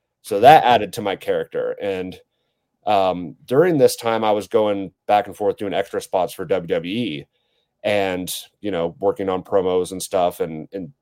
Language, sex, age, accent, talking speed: English, male, 30-49, American, 175 wpm